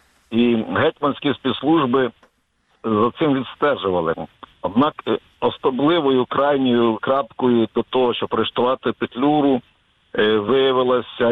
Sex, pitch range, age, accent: male, 115-130 Hz, 50-69, native